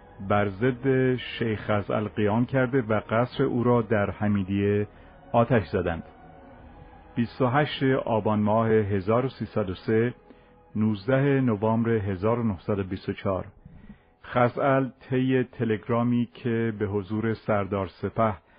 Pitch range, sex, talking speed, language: 100-115 Hz, male, 90 wpm, Persian